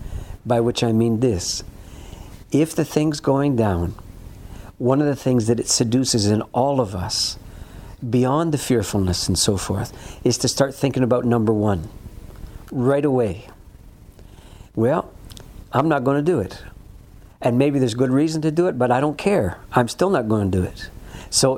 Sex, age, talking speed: male, 60-79, 175 wpm